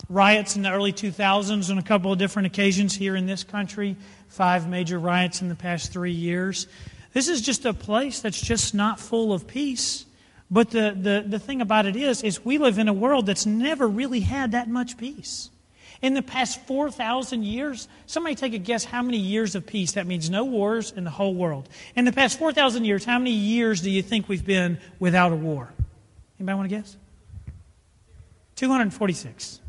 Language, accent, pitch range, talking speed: English, American, 190-240 Hz, 200 wpm